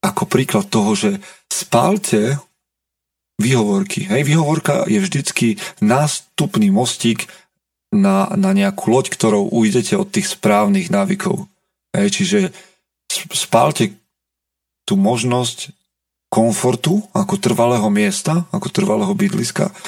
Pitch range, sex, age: 145-195 Hz, male, 40-59